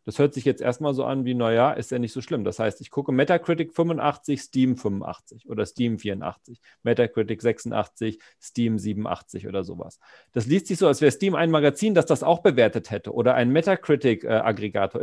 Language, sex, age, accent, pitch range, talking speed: German, male, 40-59, German, 130-195 Hz, 195 wpm